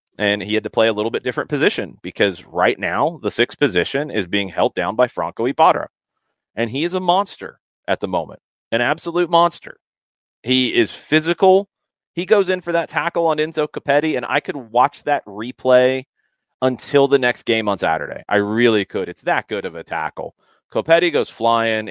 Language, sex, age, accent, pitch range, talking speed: English, male, 30-49, American, 105-140 Hz, 190 wpm